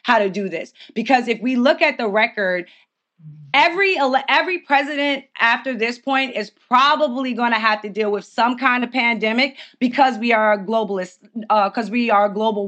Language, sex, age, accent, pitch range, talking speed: English, female, 20-39, American, 210-270 Hz, 195 wpm